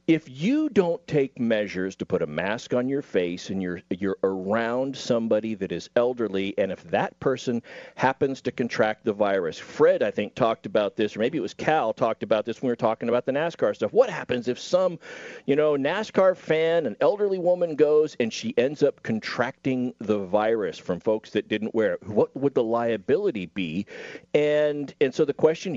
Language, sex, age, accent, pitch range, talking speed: English, male, 40-59, American, 115-185 Hz, 200 wpm